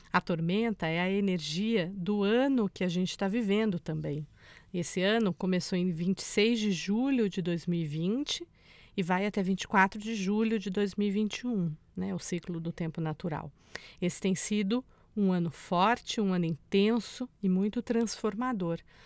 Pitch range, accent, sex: 180-225 Hz, Brazilian, female